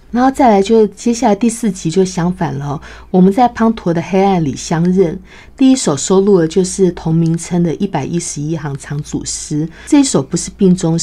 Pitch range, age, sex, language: 160-200 Hz, 50-69, female, Chinese